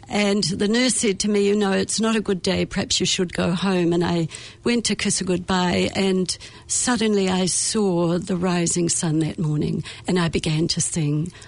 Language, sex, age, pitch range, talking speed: English, female, 60-79, 175-220 Hz, 205 wpm